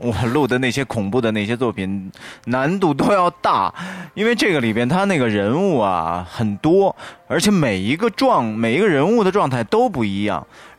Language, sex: Chinese, male